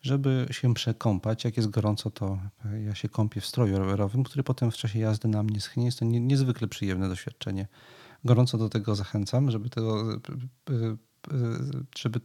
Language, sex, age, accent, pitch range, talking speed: Polish, male, 40-59, native, 110-125 Hz, 155 wpm